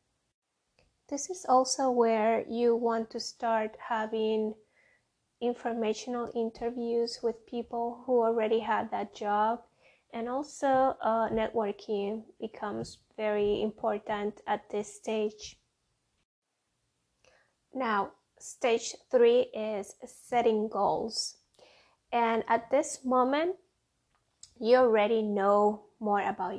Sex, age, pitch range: female, 20-39, 210-250 Hz